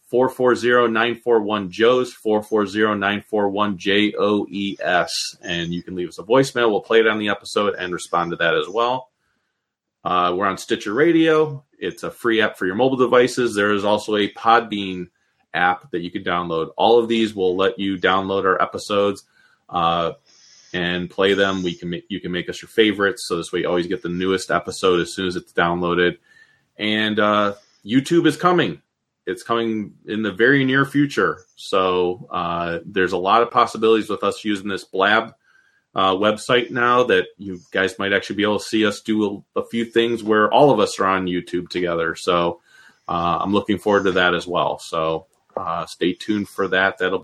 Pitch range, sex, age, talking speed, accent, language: 90-115 Hz, male, 30-49, 185 wpm, American, English